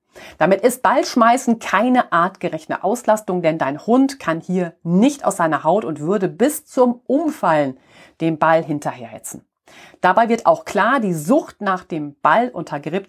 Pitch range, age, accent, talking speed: 160-230 Hz, 40-59, German, 150 wpm